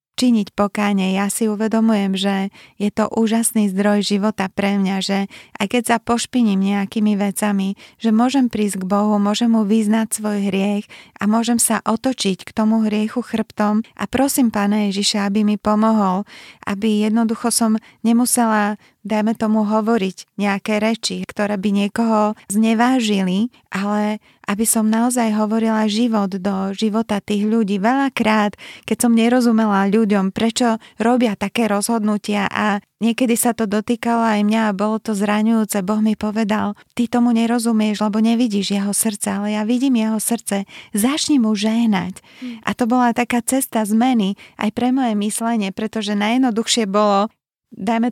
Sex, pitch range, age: female, 205-230 Hz, 20-39